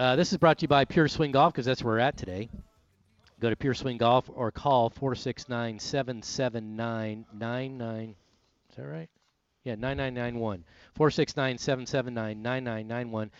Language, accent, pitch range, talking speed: English, American, 110-135 Hz, 130 wpm